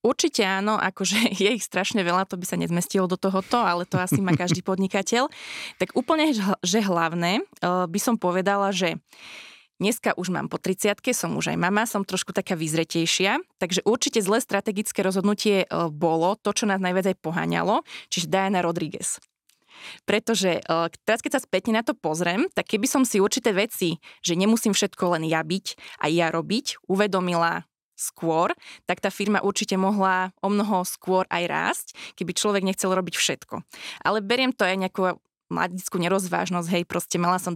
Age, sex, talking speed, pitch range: 20-39, female, 170 wpm, 180-215 Hz